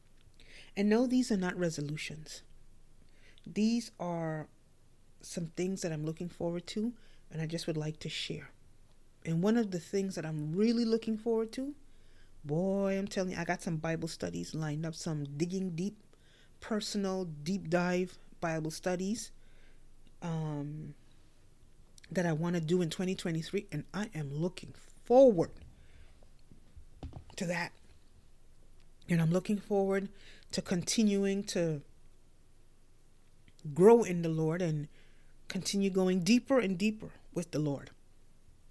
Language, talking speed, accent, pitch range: English, 135 wpm, American, 155-200 Hz